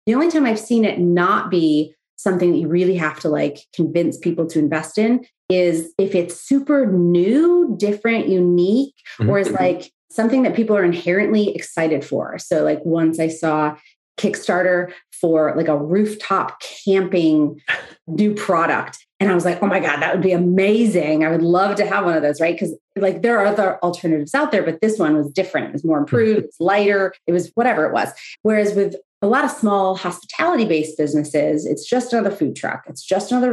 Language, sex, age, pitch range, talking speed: English, female, 30-49, 160-205 Hz, 195 wpm